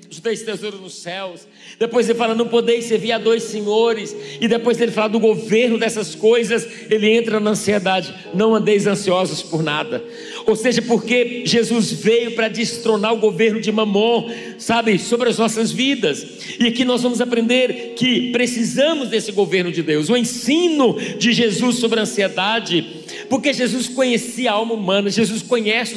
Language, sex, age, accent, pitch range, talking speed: Portuguese, male, 50-69, Brazilian, 195-235 Hz, 170 wpm